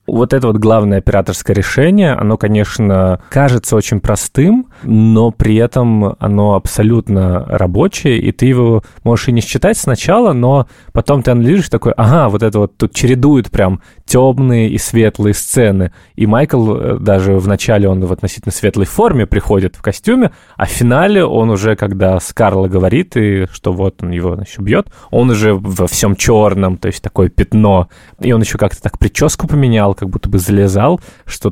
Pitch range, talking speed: 100-125 Hz, 170 wpm